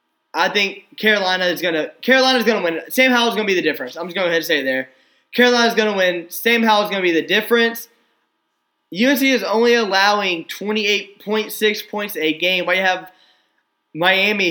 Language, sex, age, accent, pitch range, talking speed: English, male, 10-29, American, 160-215 Hz, 210 wpm